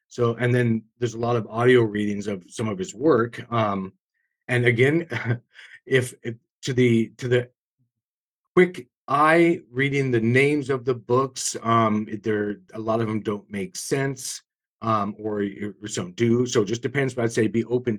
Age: 40-59